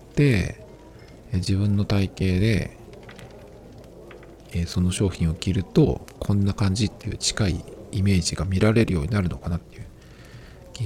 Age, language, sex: 50-69, Japanese, male